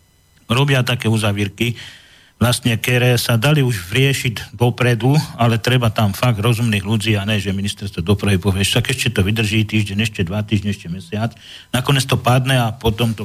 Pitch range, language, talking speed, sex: 105-130 Hz, Slovak, 175 wpm, male